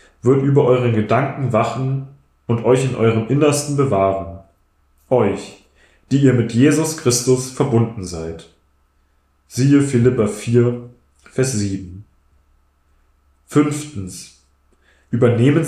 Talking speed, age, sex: 100 wpm, 10-29, male